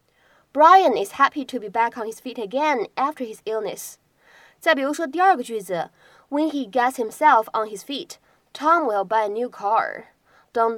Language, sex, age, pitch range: Chinese, female, 20-39, 220-300 Hz